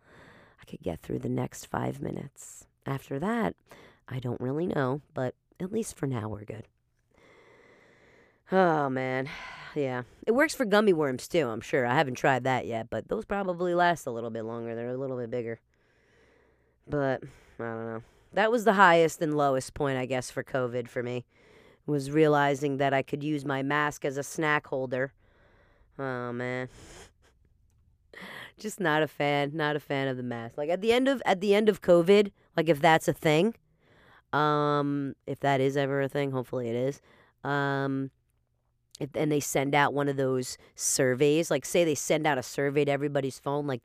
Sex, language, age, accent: female, English, 30-49, American